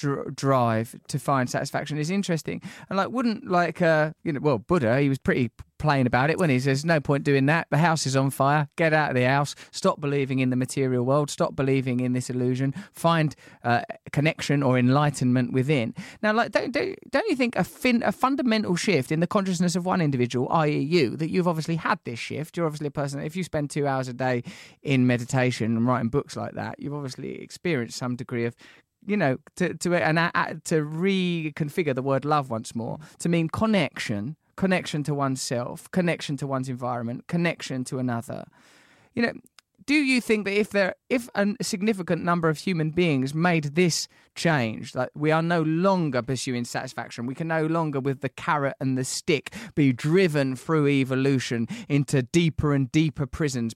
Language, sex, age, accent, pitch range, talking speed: English, male, 20-39, British, 130-170 Hz, 195 wpm